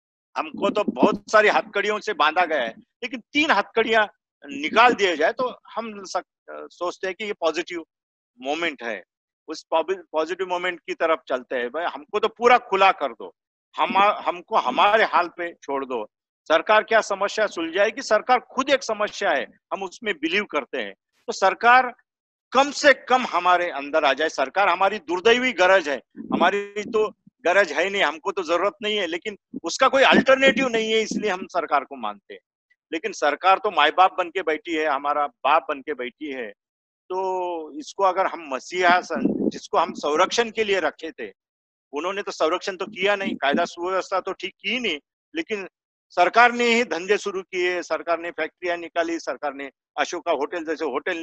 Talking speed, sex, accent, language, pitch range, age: 160 wpm, male, native, Hindi, 165-215 Hz, 50-69